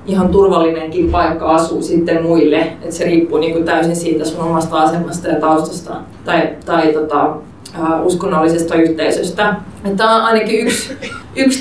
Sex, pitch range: female, 170-210 Hz